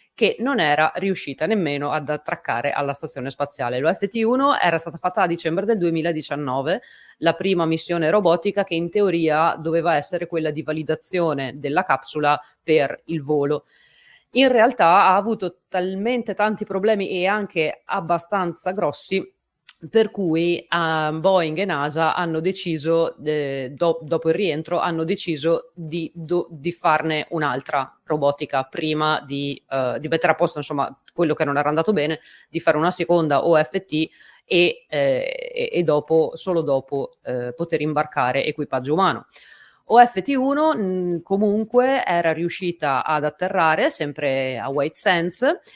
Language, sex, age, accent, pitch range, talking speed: Italian, female, 30-49, native, 155-200 Hz, 140 wpm